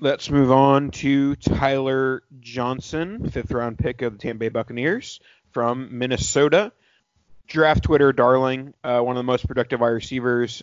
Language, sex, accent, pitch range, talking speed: English, male, American, 120-135 Hz, 145 wpm